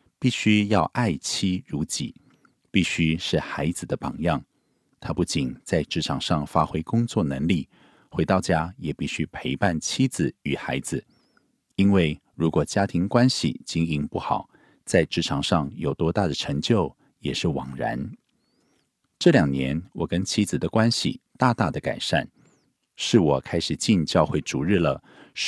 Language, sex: Korean, male